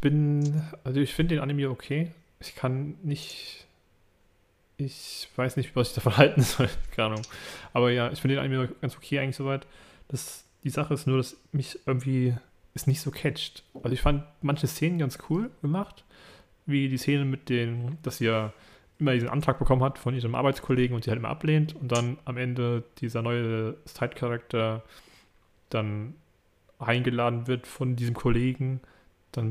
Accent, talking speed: German, 170 wpm